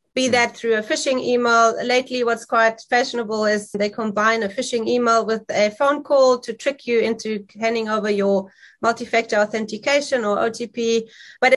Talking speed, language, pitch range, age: 165 wpm, English, 210-250 Hz, 30-49